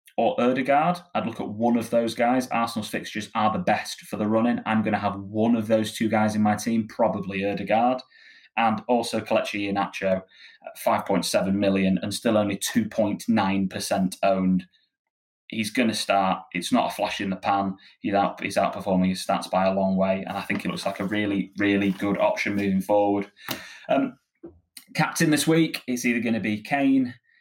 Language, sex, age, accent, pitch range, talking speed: English, male, 20-39, British, 100-125 Hz, 185 wpm